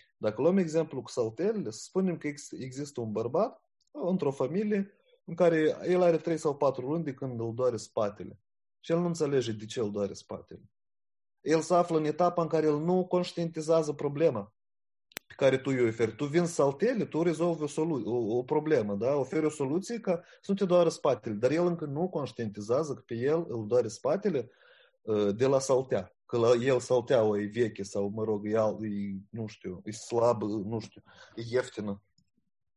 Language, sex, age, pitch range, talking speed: Romanian, male, 30-49, 110-165 Hz, 185 wpm